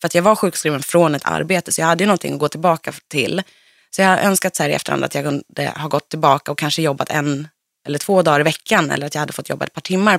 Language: Swedish